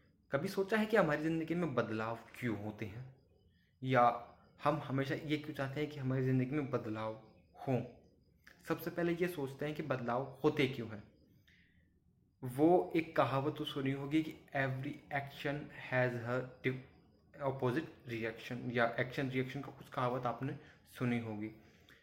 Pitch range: 125-150 Hz